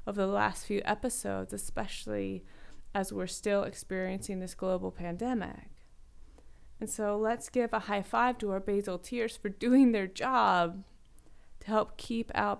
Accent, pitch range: American, 165-220 Hz